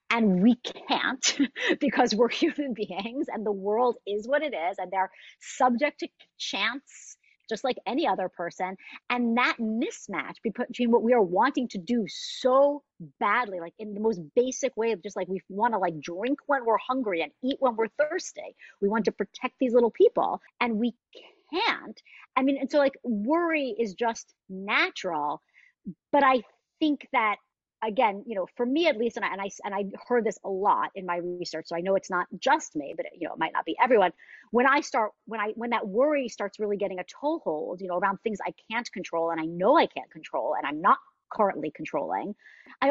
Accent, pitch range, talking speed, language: American, 200-275 Hz, 210 wpm, English